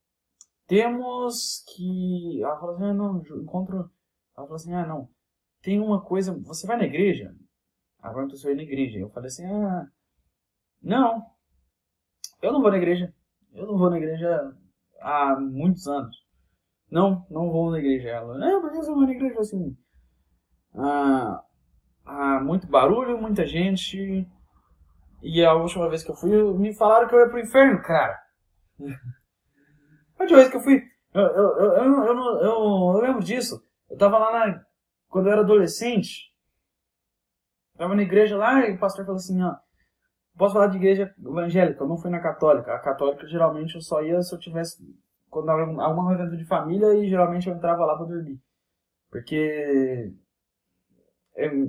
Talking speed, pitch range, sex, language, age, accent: 165 wpm, 135-200 Hz, male, Portuguese, 20-39, Brazilian